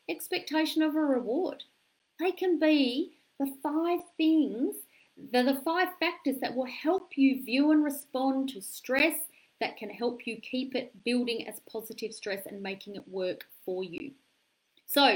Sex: female